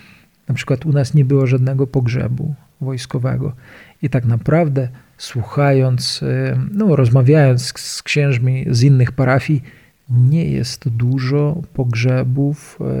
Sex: male